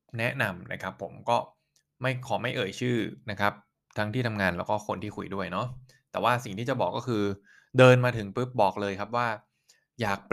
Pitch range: 95-125 Hz